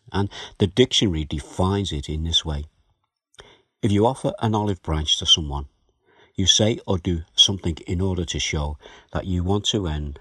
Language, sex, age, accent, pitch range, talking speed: English, male, 60-79, British, 80-100 Hz, 175 wpm